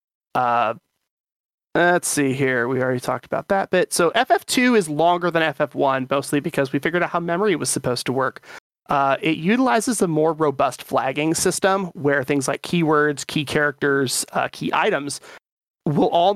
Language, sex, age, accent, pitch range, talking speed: English, male, 30-49, American, 140-175 Hz, 170 wpm